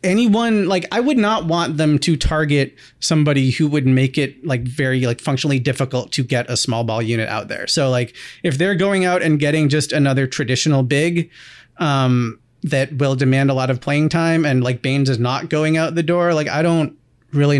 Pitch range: 135-165 Hz